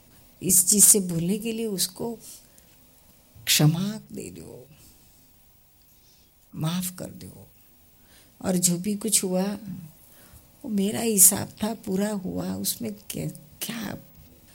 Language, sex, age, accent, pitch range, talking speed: Gujarati, female, 50-69, native, 160-210 Hz, 115 wpm